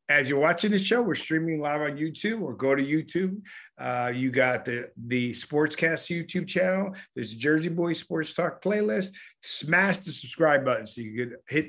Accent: American